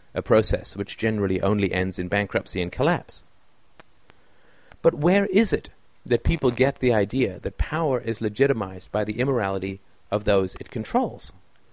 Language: English